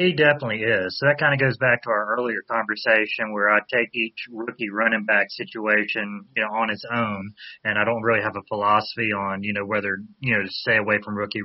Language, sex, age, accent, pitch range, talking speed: English, male, 30-49, American, 105-120 Hz, 230 wpm